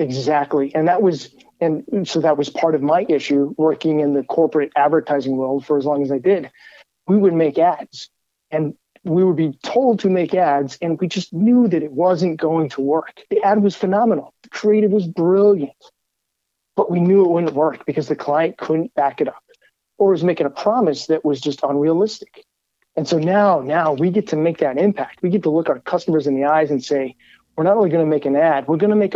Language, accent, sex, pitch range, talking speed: English, American, male, 145-180 Hz, 220 wpm